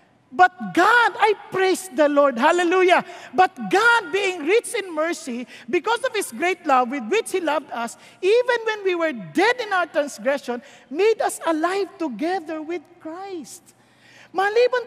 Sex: male